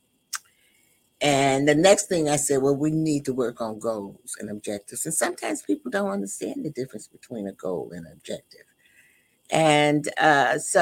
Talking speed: 165 wpm